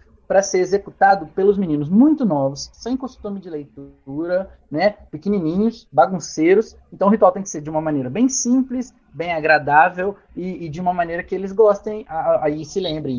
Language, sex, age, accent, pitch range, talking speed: Portuguese, male, 20-39, Brazilian, 150-205 Hz, 175 wpm